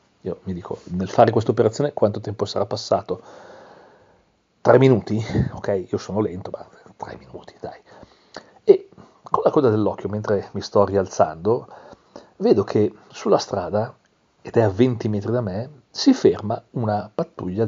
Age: 40-59